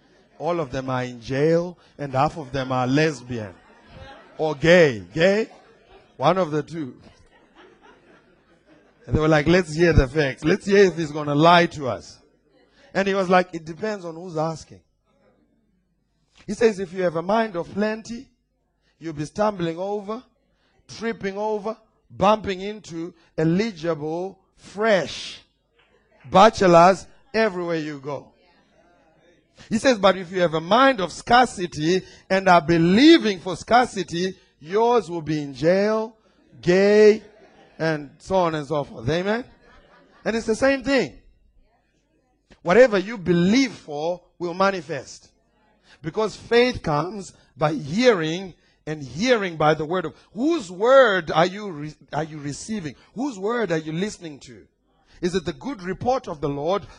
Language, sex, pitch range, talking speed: English, male, 155-210 Hz, 145 wpm